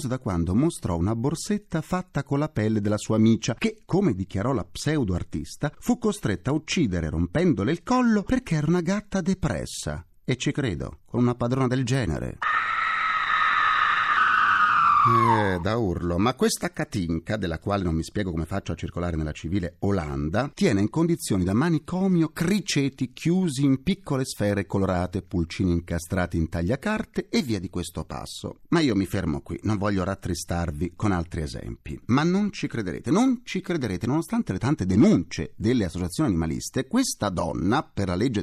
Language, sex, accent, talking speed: Italian, male, native, 165 wpm